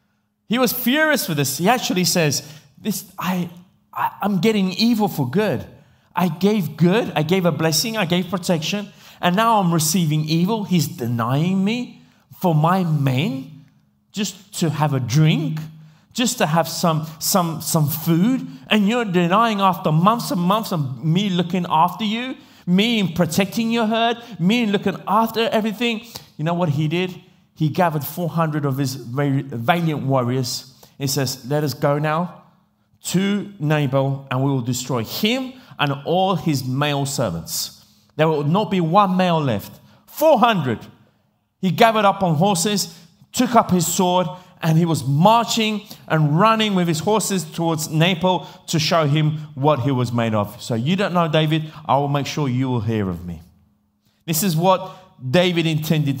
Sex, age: male, 30-49